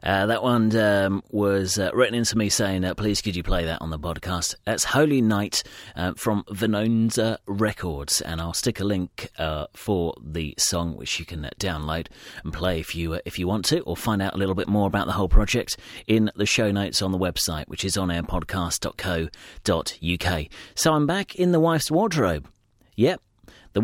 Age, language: 40-59, English